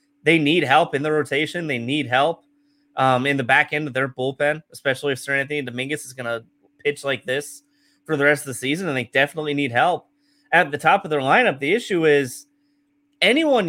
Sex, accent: male, American